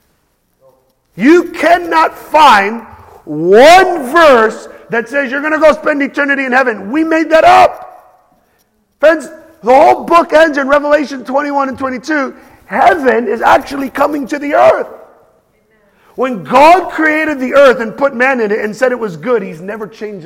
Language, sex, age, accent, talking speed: English, male, 40-59, American, 160 wpm